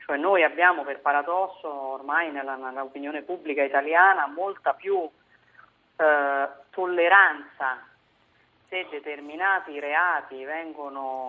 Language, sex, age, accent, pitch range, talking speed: Italian, female, 30-49, native, 140-175 Hz, 90 wpm